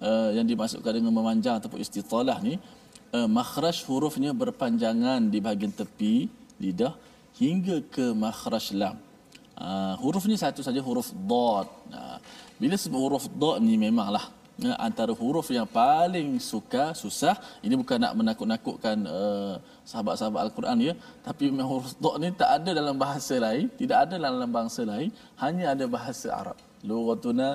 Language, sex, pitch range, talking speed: Malayalam, male, 150-250 Hz, 155 wpm